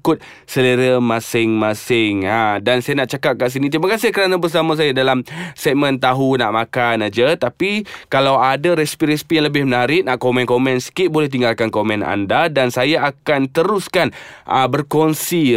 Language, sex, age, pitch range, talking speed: Malay, male, 20-39, 125-165 Hz, 160 wpm